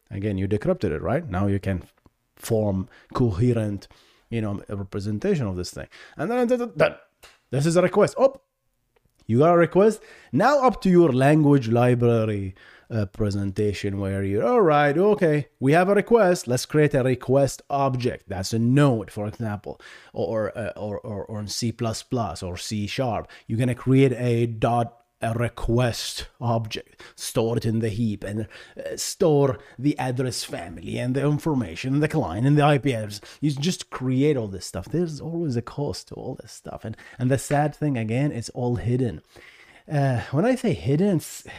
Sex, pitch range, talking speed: male, 110-150 Hz, 175 wpm